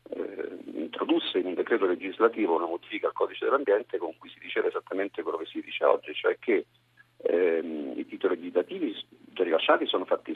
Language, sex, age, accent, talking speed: Italian, male, 40-59, native, 175 wpm